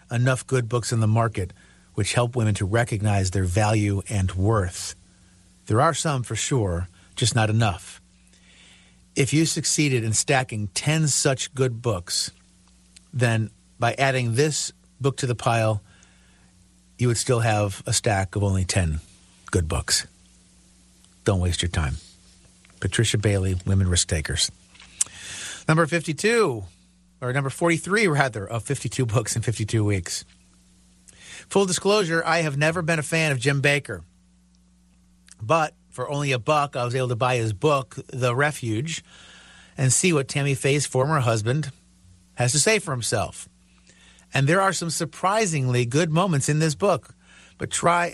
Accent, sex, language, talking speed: American, male, English, 150 wpm